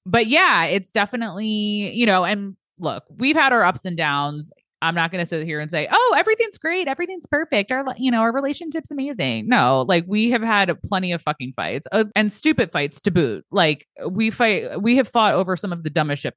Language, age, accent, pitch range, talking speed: English, 20-39, American, 145-210 Hz, 215 wpm